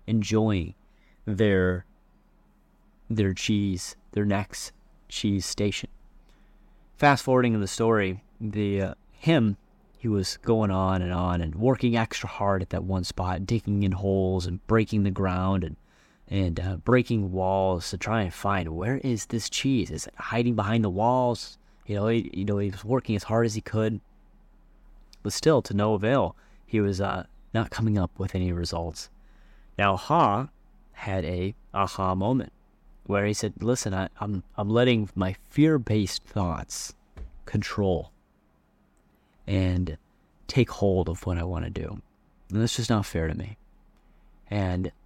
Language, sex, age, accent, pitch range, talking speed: English, male, 30-49, American, 95-115 Hz, 155 wpm